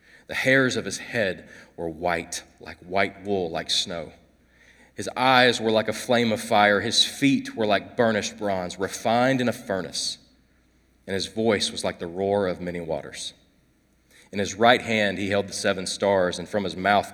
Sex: male